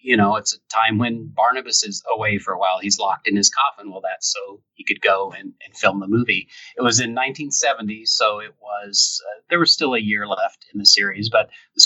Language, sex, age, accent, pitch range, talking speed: English, male, 30-49, American, 100-150 Hz, 240 wpm